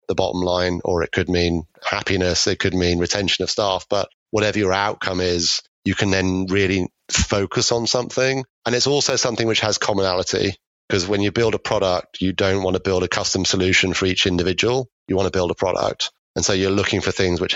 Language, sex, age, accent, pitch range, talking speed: English, male, 30-49, British, 90-95 Hz, 215 wpm